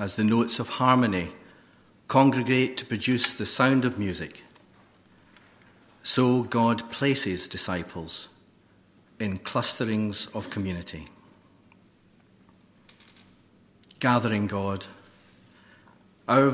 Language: English